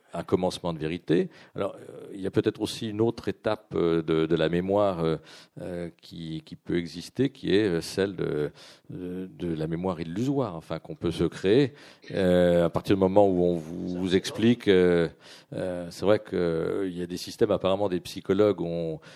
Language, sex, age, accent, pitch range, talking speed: French, male, 50-69, French, 80-95 Hz, 200 wpm